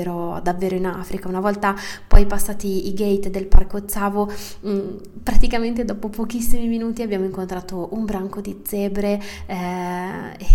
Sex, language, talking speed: female, Italian, 130 wpm